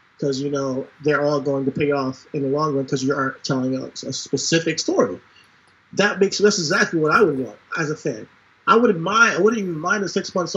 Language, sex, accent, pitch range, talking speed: English, male, American, 150-195 Hz, 240 wpm